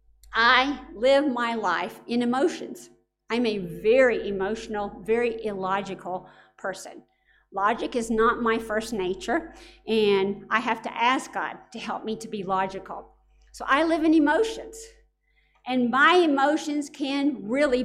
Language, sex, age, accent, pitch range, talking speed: English, female, 50-69, American, 215-295 Hz, 140 wpm